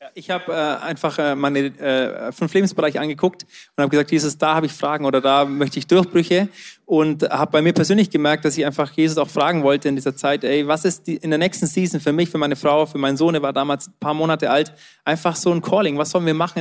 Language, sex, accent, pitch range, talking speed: German, male, German, 155-180 Hz, 255 wpm